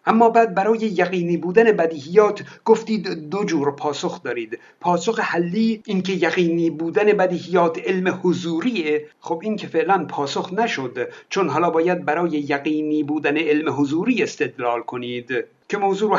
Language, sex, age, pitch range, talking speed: Persian, male, 60-79, 150-205 Hz, 140 wpm